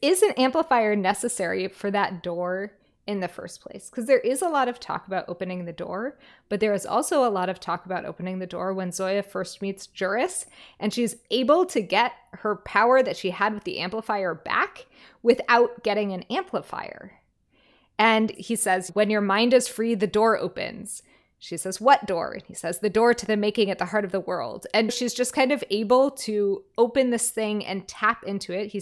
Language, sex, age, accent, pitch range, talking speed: English, female, 20-39, American, 190-235 Hz, 210 wpm